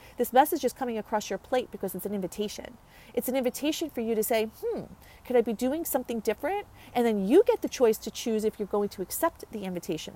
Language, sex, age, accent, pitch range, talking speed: English, female, 40-59, American, 195-240 Hz, 235 wpm